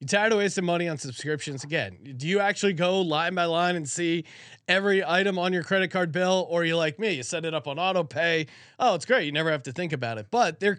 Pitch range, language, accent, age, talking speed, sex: 150-195 Hz, English, American, 30-49, 265 wpm, male